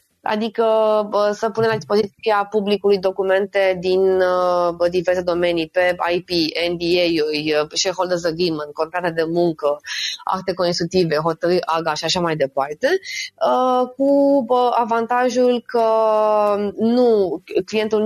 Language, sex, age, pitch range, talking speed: Romanian, female, 20-39, 180-225 Hz, 105 wpm